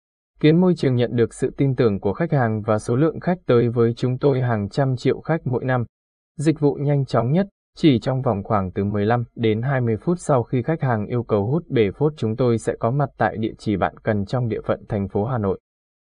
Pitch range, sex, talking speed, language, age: 110-145 Hz, male, 245 wpm, Vietnamese, 20-39